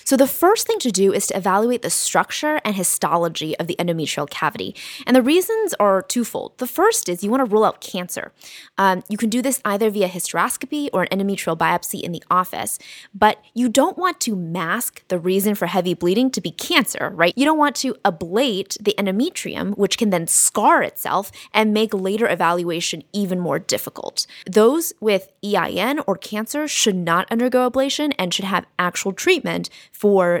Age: 20-39